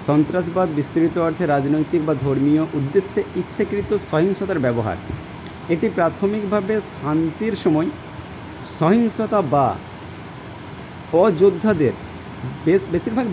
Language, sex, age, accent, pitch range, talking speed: Bengali, male, 50-69, native, 150-195 Hz, 80 wpm